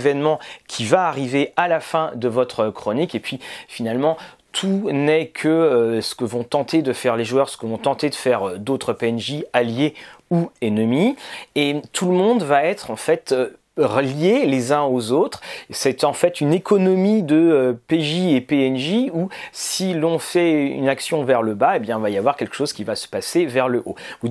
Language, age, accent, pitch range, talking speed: French, 30-49, French, 125-175 Hz, 205 wpm